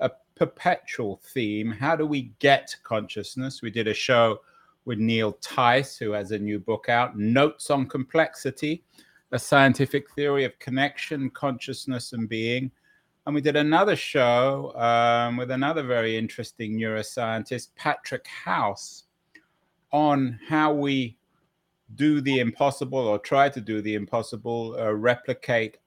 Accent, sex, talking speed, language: British, male, 135 wpm, English